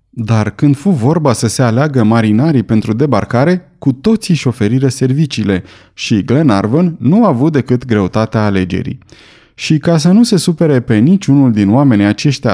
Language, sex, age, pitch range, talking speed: Romanian, male, 30-49, 115-160 Hz, 165 wpm